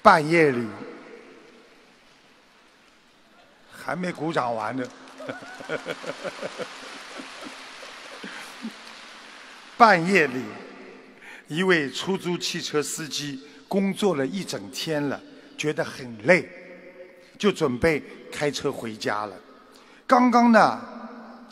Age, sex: 50-69, male